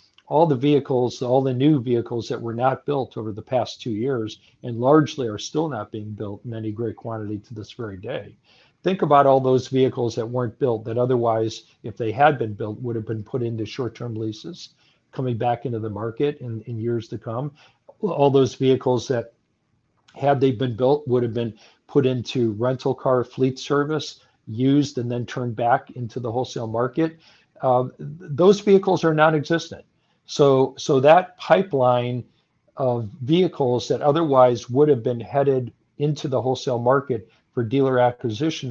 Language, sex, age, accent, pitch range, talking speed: English, male, 50-69, American, 115-145 Hz, 175 wpm